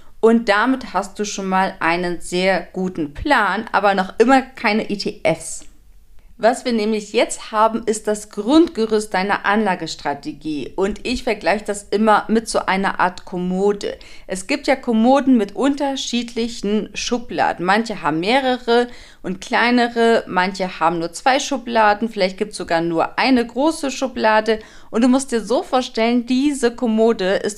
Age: 40-59